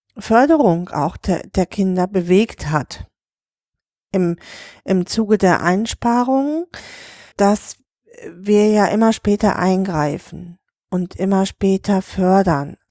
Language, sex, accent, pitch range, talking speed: German, female, German, 180-230 Hz, 100 wpm